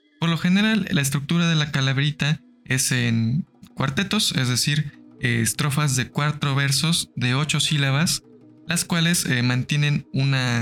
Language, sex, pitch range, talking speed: Spanish, male, 125-160 Hz, 135 wpm